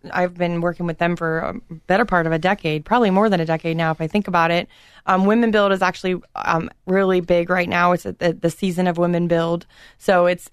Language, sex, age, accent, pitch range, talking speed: English, female, 20-39, American, 170-200 Hz, 240 wpm